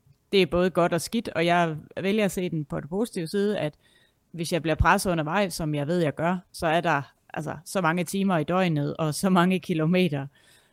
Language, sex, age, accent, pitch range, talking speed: Danish, female, 30-49, native, 155-190 Hz, 230 wpm